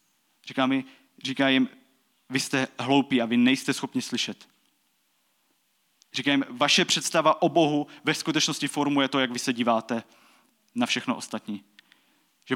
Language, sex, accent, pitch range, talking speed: Czech, male, native, 130-150 Hz, 140 wpm